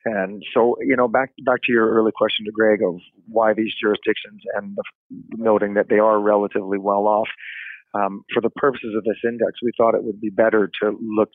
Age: 40-59